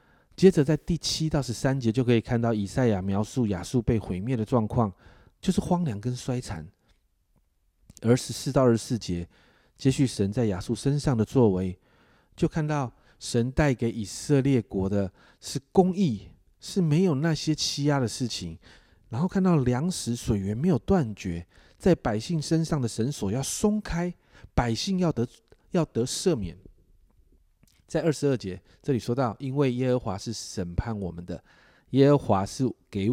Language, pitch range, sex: Chinese, 100-145 Hz, male